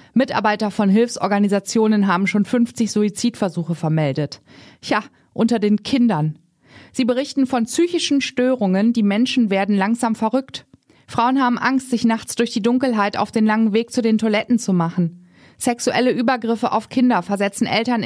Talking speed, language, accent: 150 wpm, German, German